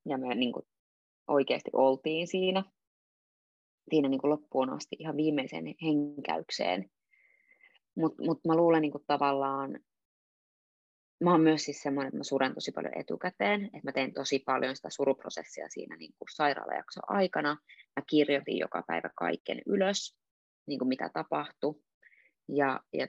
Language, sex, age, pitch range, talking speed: Finnish, female, 20-39, 135-160 Hz, 135 wpm